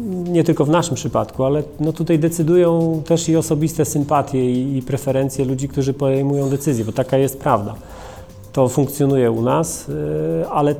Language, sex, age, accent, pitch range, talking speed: Polish, male, 30-49, native, 120-145 Hz, 155 wpm